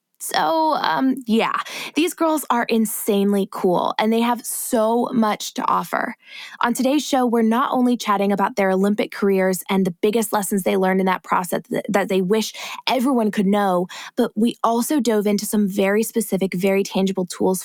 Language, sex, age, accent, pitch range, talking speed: English, female, 20-39, American, 190-240 Hz, 175 wpm